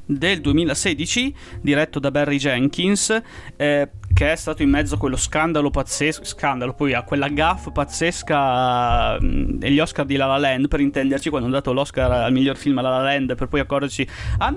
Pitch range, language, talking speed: 135-170 Hz, Italian, 190 wpm